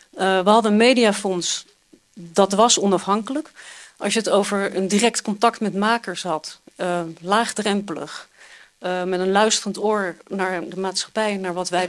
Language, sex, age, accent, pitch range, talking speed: Dutch, female, 40-59, Dutch, 195-230 Hz, 155 wpm